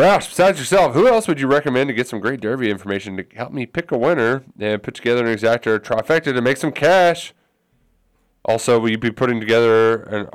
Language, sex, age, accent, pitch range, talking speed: English, male, 30-49, American, 100-140 Hz, 215 wpm